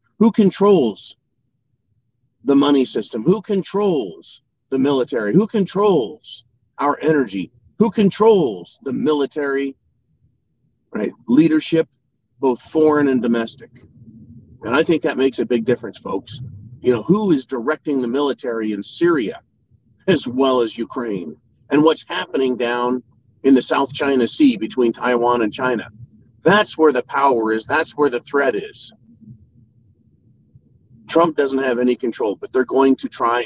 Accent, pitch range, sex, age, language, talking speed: American, 120-155 Hz, male, 40-59, English, 140 wpm